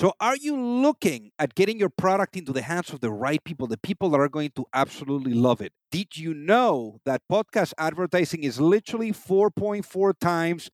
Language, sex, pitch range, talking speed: English, male, 155-210 Hz, 190 wpm